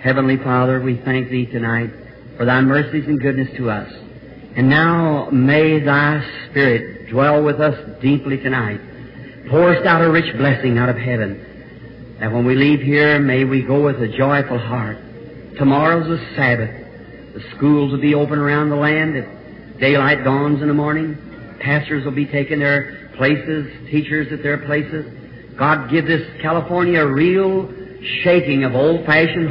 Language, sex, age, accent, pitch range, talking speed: English, male, 50-69, American, 125-150 Hz, 160 wpm